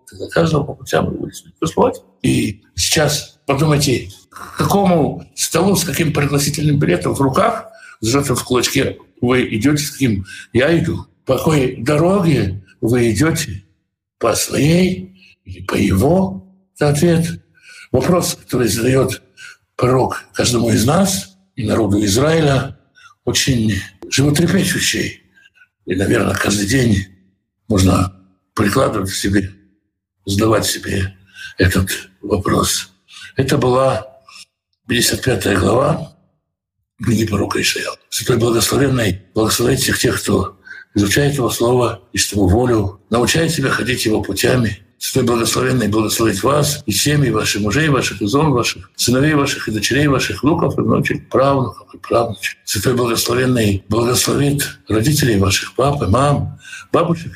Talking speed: 120 wpm